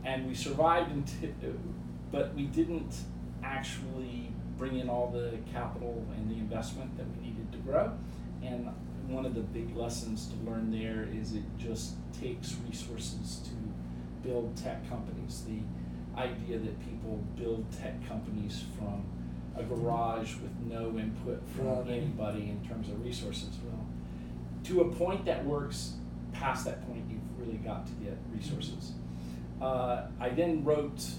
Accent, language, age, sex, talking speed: American, English, 40-59, male, 145 wpm